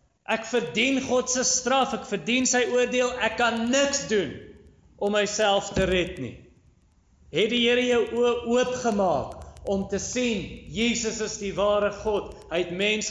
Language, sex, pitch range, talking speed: English, male, 140-220 Hz, 145 wpm